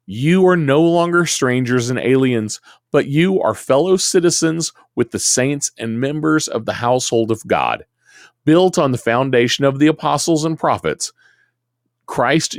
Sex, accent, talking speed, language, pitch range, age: male, American, 155 wpm, English, 115-155 Hz, 40-59